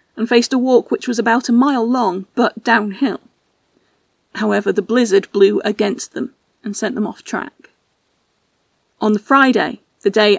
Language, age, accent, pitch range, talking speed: English, 40-59, British, 200-235 Hz, 160 wpm